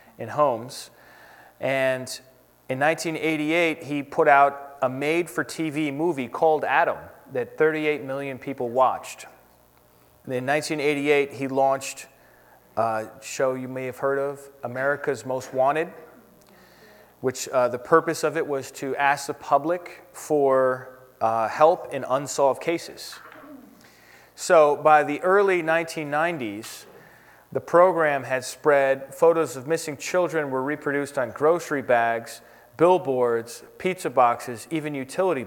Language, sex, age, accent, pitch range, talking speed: English, male, 30-49, American, 130-160 Hz, 125 wpm